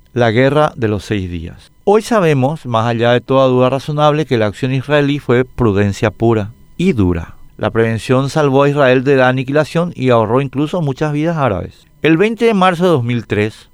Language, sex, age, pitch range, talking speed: Spanish, male, 50-69, 115-150 Hz, 190 wpm